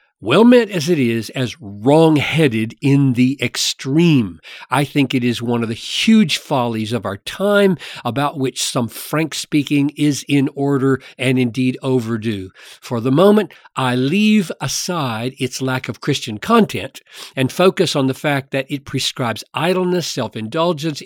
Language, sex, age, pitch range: English, male, 50-69, 120-155 Hz